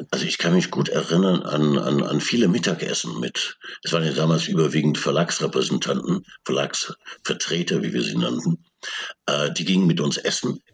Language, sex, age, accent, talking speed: German, male, 60-79, German, 160 wpm